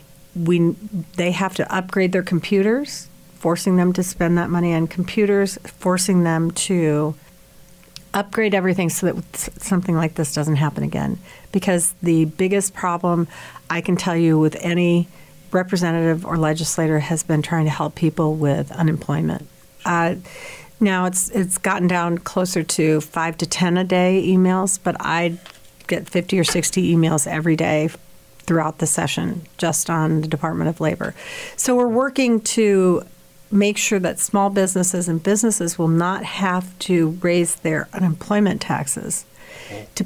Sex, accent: female, American